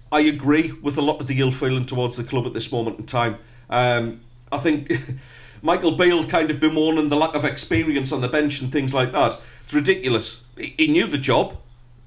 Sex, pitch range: male, 120-160 Hz